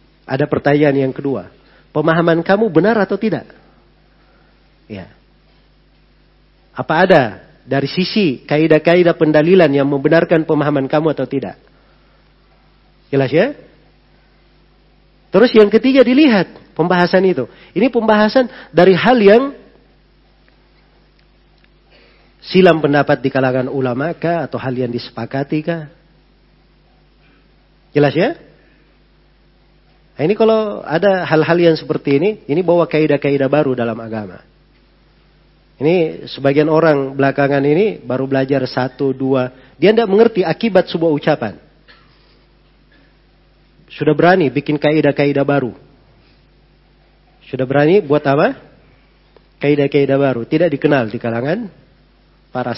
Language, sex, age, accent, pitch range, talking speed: Indonesian, male, 40-59, native, 135-175 Hz, 105 wpm